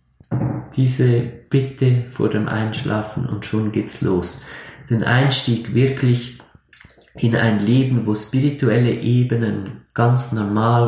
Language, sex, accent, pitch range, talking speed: German, male, German, 105-130 Hz, 110 wpm